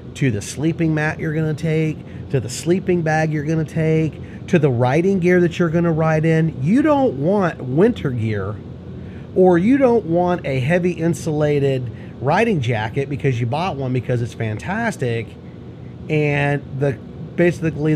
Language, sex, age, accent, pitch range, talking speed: English, male, 30-49, American, 125-180 Hz, 155 wpm